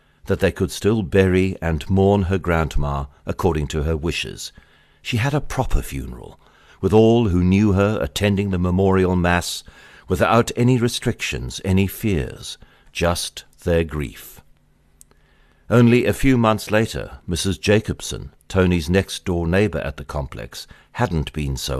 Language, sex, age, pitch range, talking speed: English, male, 60-79, 75-105 Hz, 140 wpm